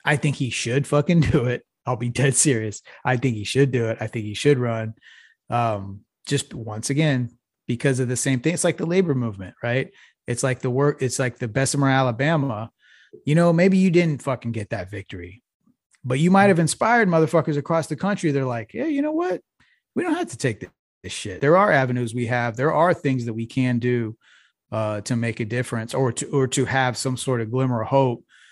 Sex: male